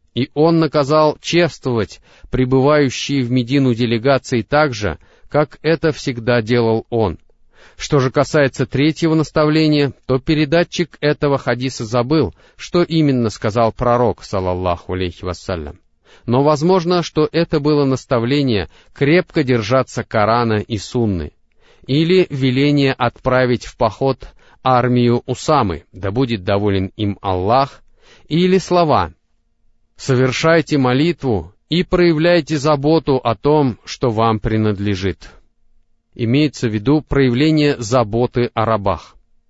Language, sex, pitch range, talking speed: Russian, male, 110-150 Hz, 110 wpm